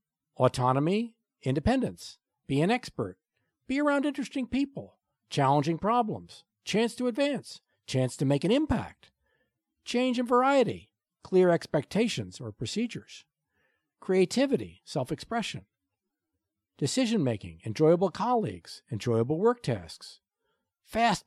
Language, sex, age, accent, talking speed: English, male, 50-69, American, 105 wpm